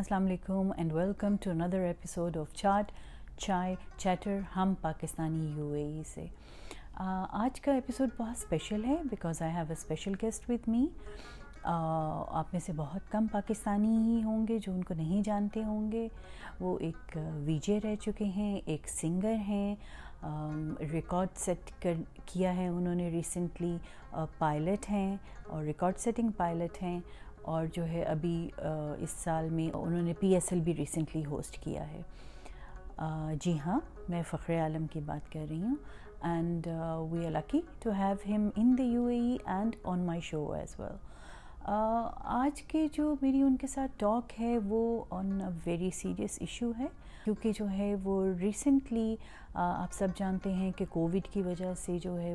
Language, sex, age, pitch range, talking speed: Urdu, female, 40-59, 165-210 Hz, 145 wpm